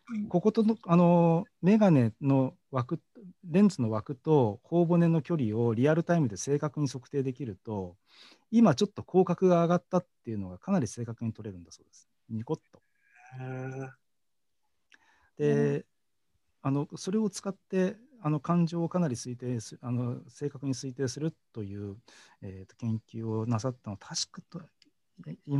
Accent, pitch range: native, 110-165 Hz